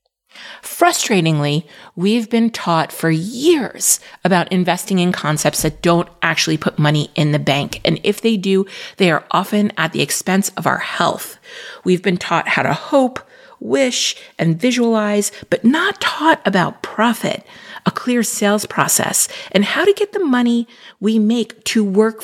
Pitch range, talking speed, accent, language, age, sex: 180-235 Hz, 160 wpm, American, English, 40-59, female